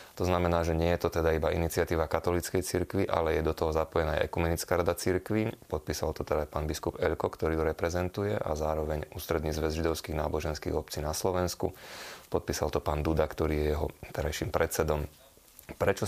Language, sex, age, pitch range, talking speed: Slovak, male, 20-39, 80-90 Hz, 180 wpm